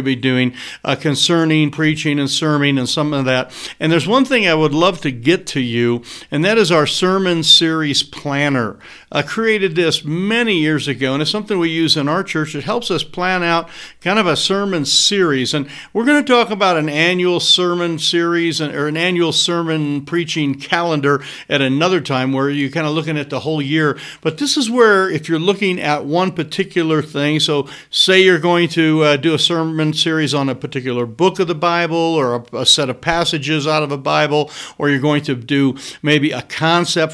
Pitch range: 140-170 Hz